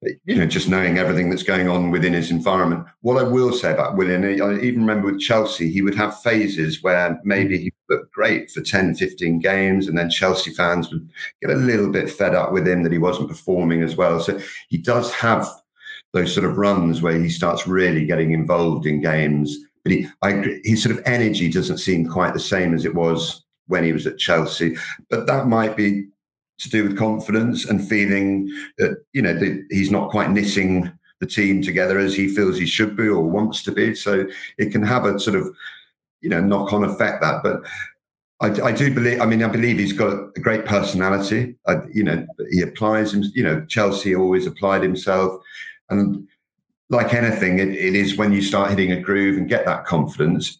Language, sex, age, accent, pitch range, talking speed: English, male, 50-69, British, 90-105 Hz, 205 wpm